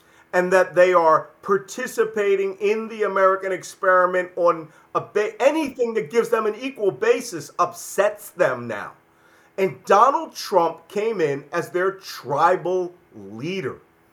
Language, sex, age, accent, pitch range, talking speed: English, male, 40-59, American, 170-225 Hz, 125 wpm